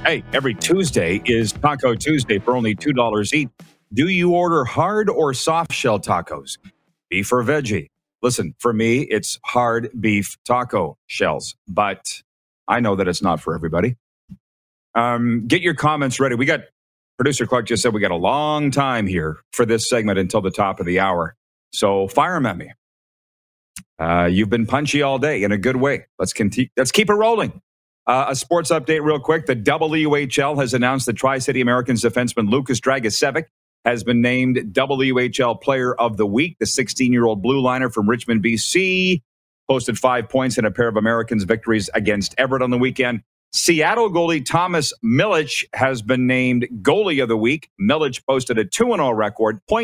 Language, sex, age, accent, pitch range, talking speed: English, male, 40-59, American, 110-140 Hz, 175 wpm